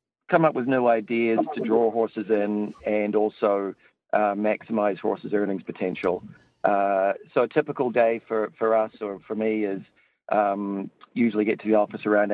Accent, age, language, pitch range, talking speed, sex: Australian, 40-59, English, 100-115 Hz, 170 wpm, male